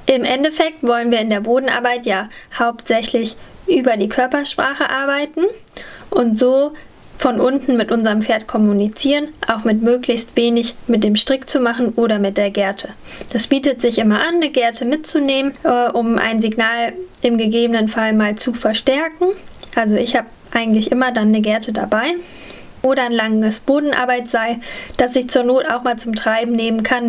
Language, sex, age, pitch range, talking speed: German, female, 10-29, 225-270 Hz, 165 wpm